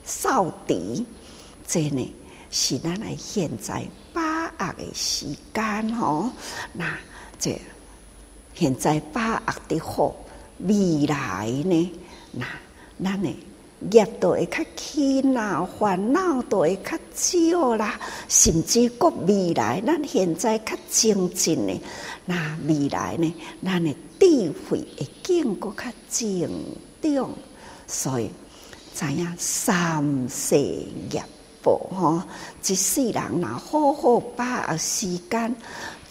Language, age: Chinese, 60-79